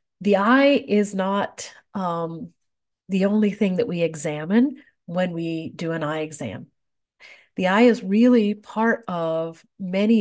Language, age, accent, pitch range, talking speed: English, 40-59, American, 160-195 Hz, 140 wpm